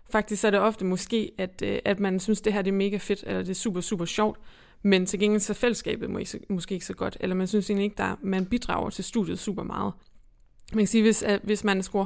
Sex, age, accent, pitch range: female, 20-39, native, 190-215 Hz